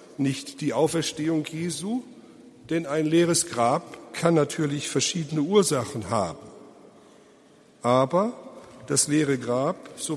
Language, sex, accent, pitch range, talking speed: German, male, German, 140-175 Hz, 105 wpm